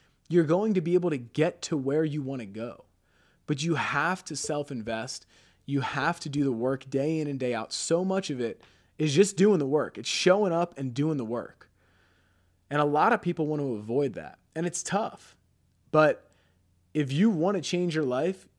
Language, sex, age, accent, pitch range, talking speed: English, male, 30-49, American, 115-145 Hz, 215 wpm